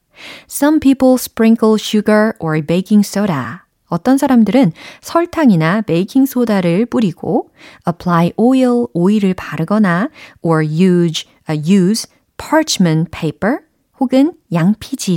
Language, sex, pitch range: Korean, female, 170-250 Hz